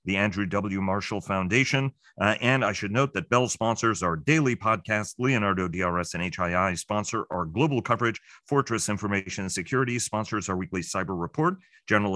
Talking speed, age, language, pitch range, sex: 165 wpm, 40-59, English, 90-110 Hz, male